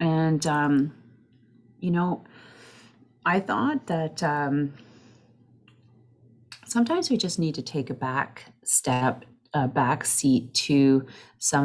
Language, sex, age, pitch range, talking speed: English, female, 30-49, 130-165 Hz, 110 wpm